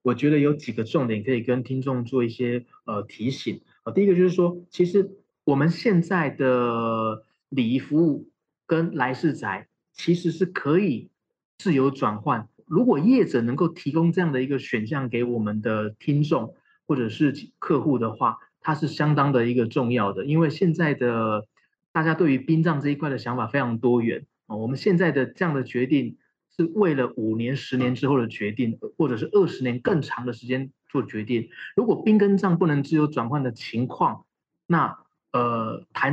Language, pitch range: Chinese, 120-165 Hz